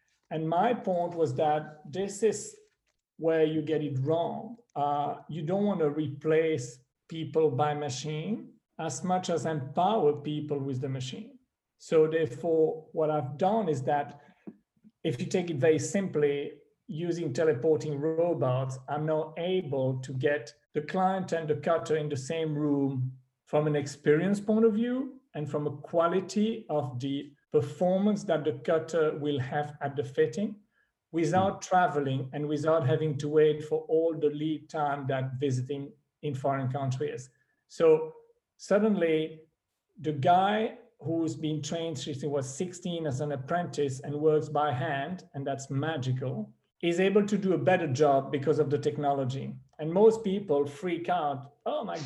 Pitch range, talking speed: 145-180 Hz, 155 wpm